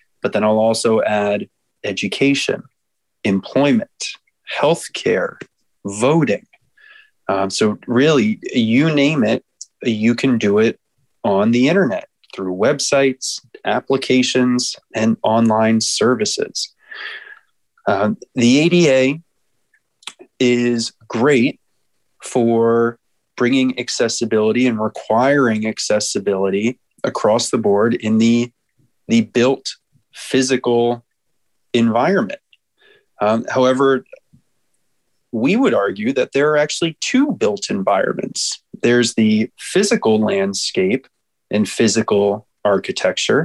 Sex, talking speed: male, 95 wpm